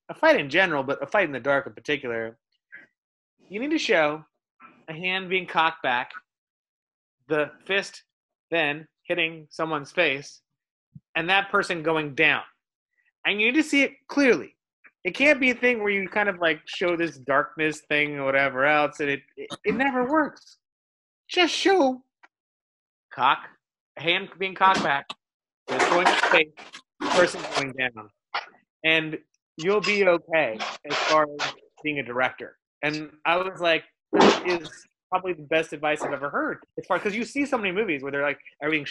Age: 30-49